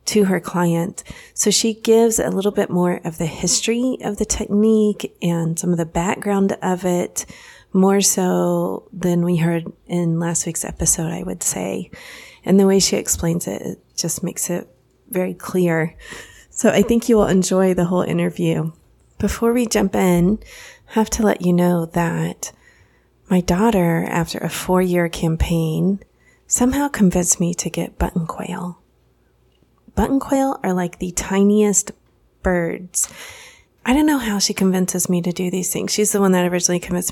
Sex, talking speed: female, 170 wpm